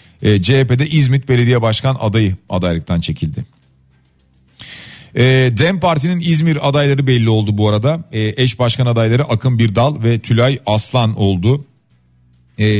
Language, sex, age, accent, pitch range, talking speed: Turkish, male, 40-59, native, 110-150 Hz, 130 wpm